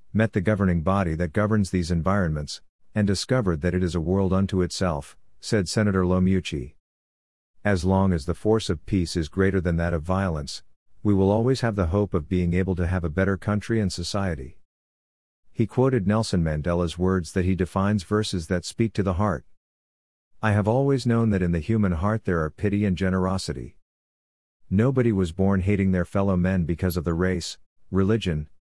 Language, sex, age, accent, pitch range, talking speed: English, male, 50-69, American, 85-100 Hz, 185 wpm